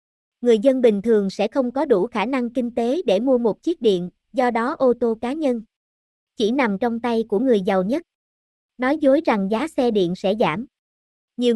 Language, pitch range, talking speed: Vietnamese, 210-265 Hz, 210 wpm